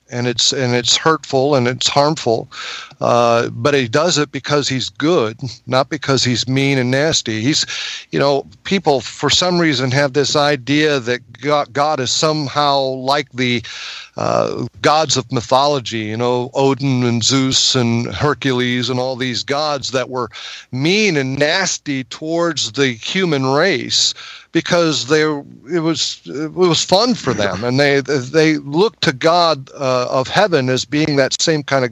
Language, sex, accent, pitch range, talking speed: English, male, American, 130-155 Hz, 160 wpm